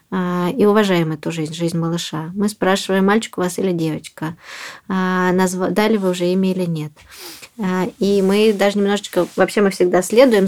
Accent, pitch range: native, 175-200 Hz